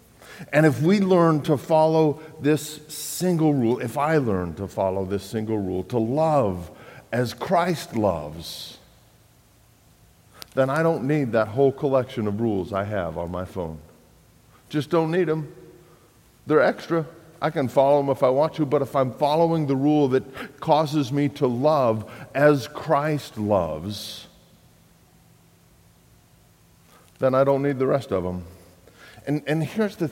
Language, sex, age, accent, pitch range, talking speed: English, male, 50-69, American, 115-155 Hz, 150 wpm